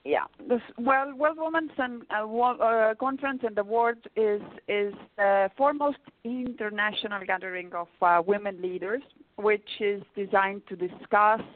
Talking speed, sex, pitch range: 125 wpm, female, 190-225 Hz